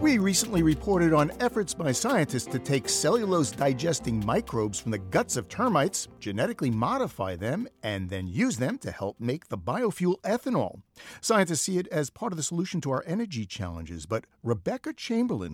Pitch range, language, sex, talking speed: 110-180 Hz, English, male, 170 wpm